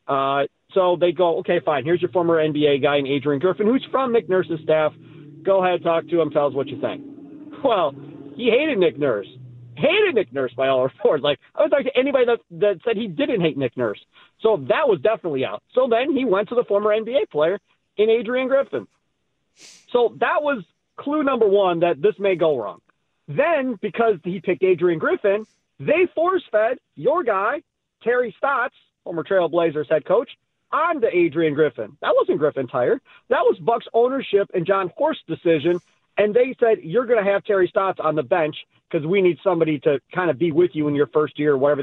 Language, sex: English, male